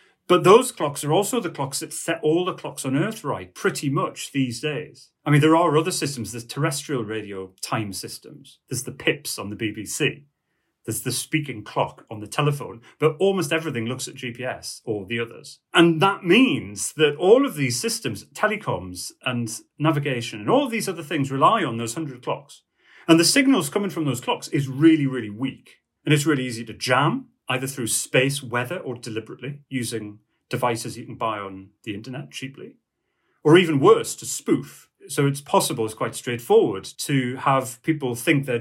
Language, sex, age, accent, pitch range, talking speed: English, male, 30-49, British, 115-155 Hz, 190 wpm